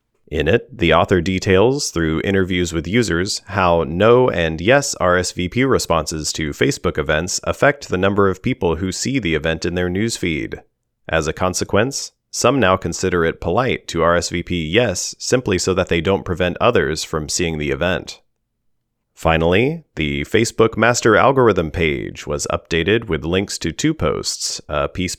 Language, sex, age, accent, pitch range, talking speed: English, male, 30-49, American, 85-100 Hz, 160 wpm